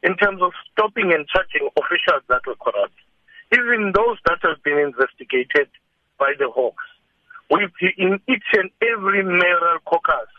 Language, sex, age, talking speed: English, male, 60-79, 145 wpm